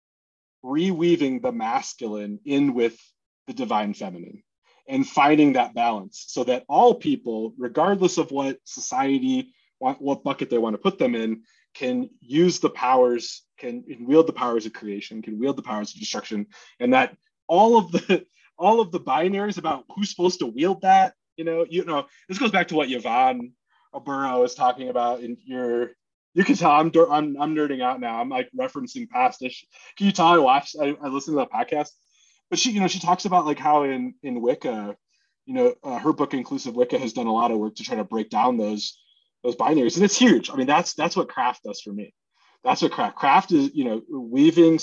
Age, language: 30-49, English